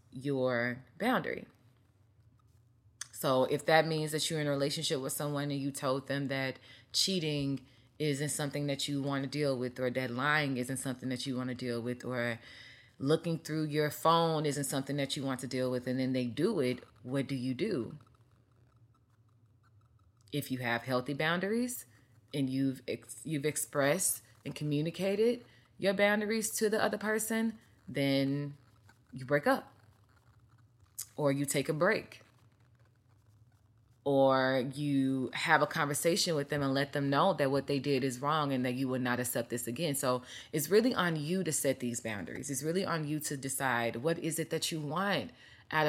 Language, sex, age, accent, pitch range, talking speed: English, female, 20-39, American, 120-155 Hz, 175 wpm